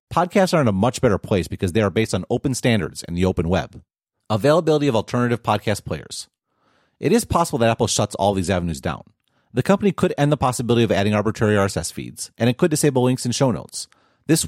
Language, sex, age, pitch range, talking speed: English, male, 40-59, 100-135 Hz, 220 wpm